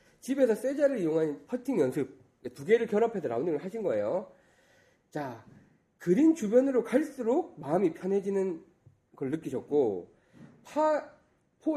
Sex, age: male, 30-49